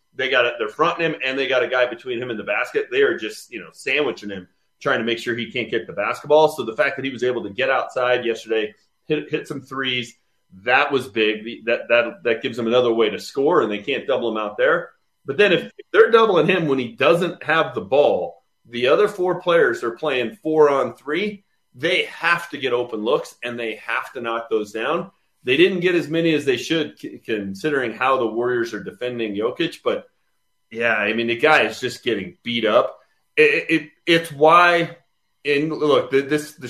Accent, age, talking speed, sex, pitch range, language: American, 30-49, 215 wpm, male, 120-170 Hz, English